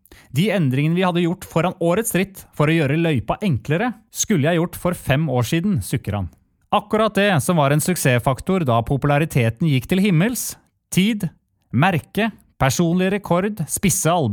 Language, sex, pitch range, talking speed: English, male, 130-185 Hz, 160 wpm